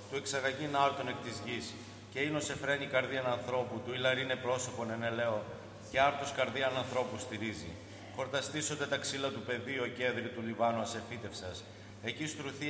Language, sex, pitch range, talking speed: Greek, male, 115-140 Hz, 155 wpm